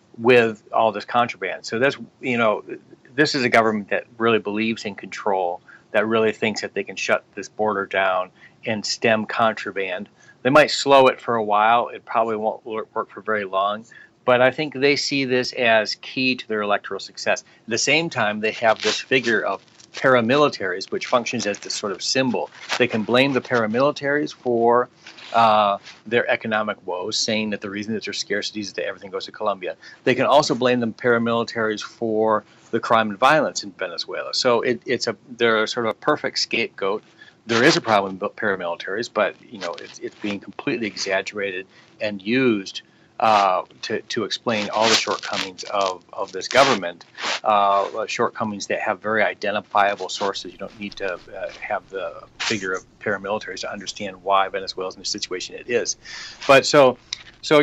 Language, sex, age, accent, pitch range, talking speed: English, male, 40-59, American, 105-125 Hz, 180 wpm